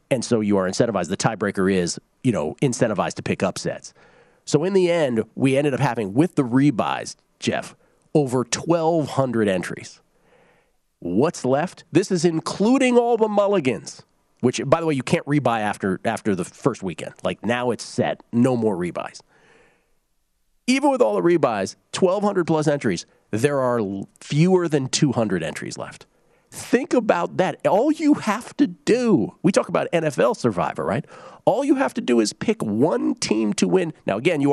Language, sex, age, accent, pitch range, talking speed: English, male, 40-59, American, 115-175 Hz, 170 wpm